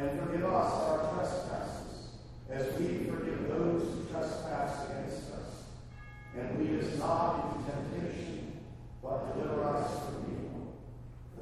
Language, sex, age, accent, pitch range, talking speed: English, male, 40-59, American, 120-150 Hz, 130 wpm